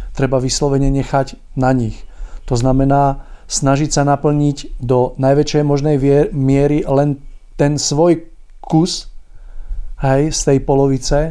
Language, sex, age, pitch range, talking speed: Czech, male, 40-59, 125-140 Hz, 115 wpm